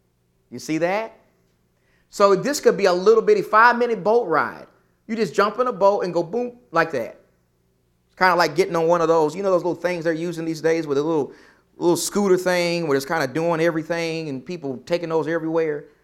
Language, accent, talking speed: English, American, 220 wpm